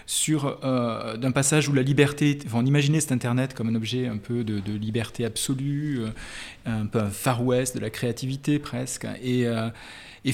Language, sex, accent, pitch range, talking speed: French, male, French, 115-150 Hz, 185 wpm